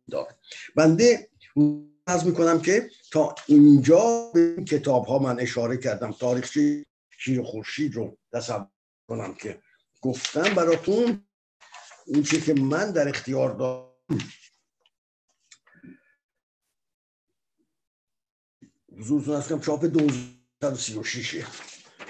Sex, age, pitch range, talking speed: male, 50-69, 125-165 Hz, 95 wpm